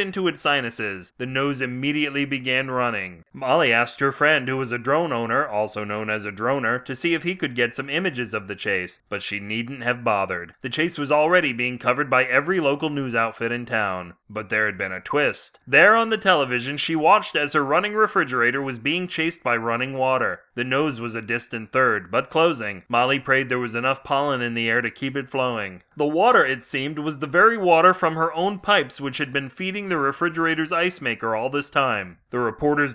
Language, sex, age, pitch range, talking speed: English, male, 30-49, 120-150 Hz, 215 wpm